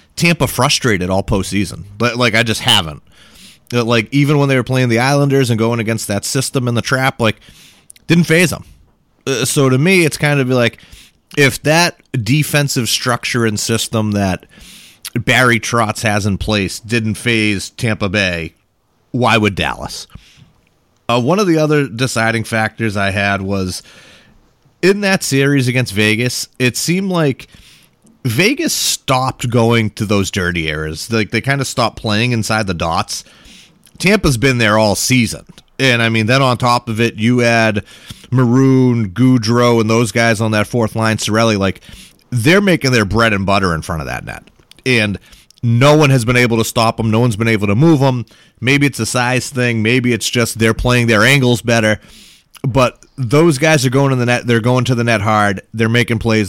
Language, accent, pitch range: English, American, 110-130 Hz